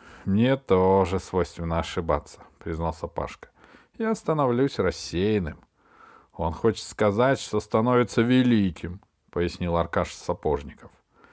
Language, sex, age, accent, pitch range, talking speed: Russian, male, 40-59, native, 85-115 Hz, 95 wpm